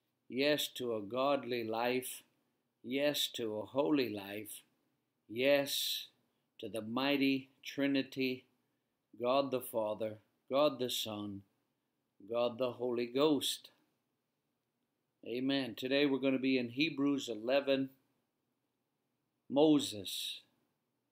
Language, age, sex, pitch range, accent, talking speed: English, 50-69, male, 120-140 Hz, American, 100 wpm